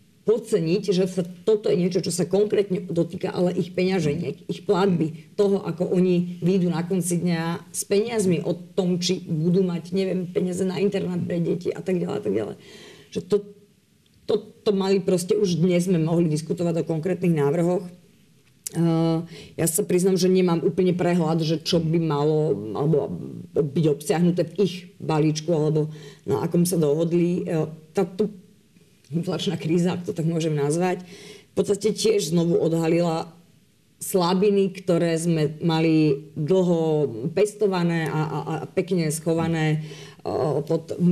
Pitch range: 160-190 Hz